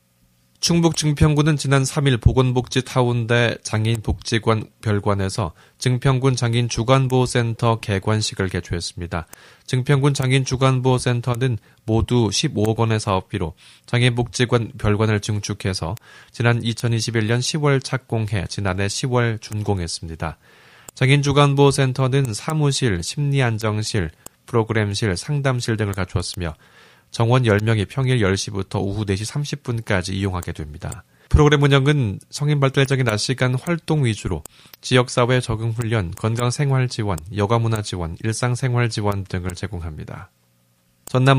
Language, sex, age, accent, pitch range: Korean, male, 20-39, native, 100-130 Hz